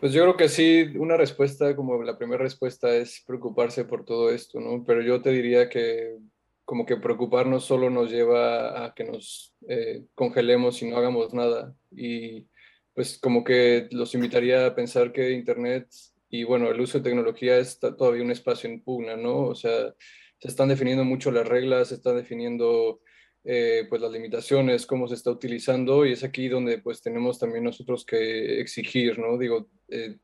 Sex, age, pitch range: male, 20-39, 120-140 Hz